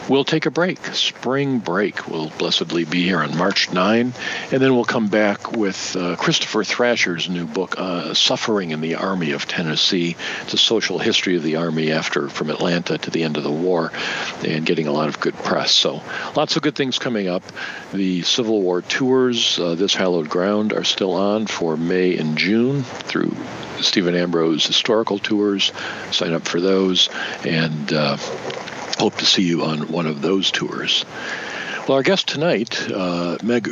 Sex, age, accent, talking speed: male, 50-69, American, 180 wpm